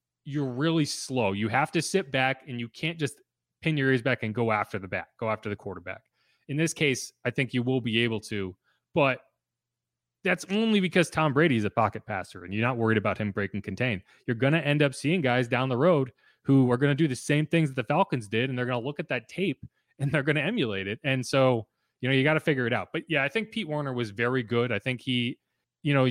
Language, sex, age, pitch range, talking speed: English, male, 30-49, 115-150 Hz, 260 wpm